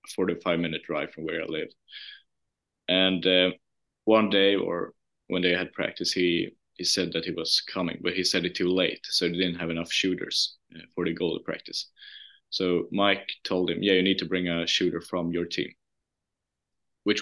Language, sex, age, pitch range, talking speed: English, male, 20-39, 85-95 Hz, 195 wpm